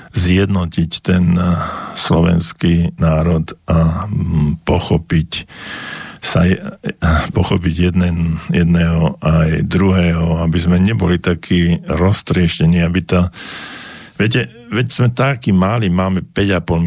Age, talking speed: 50-69, 95 wpm